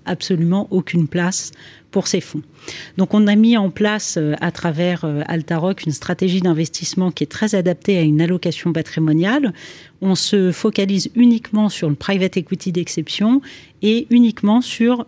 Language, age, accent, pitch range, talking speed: French, 40-59, French, 165-200 Hz, 150 wpm